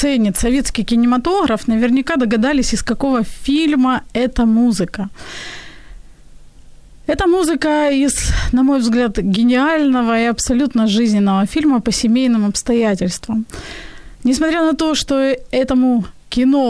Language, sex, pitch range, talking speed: Ukrainian, female, 225-275 Hz, 105 wpm